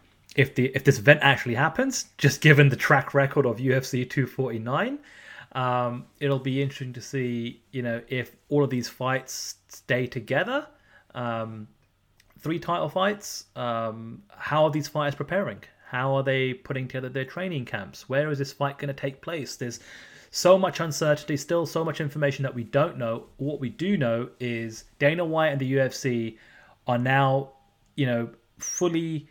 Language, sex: English, male